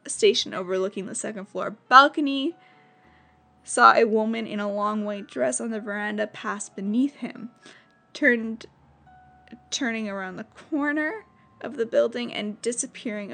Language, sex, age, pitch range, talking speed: English, female, 10-29, 200-235 Hz, 135 wpm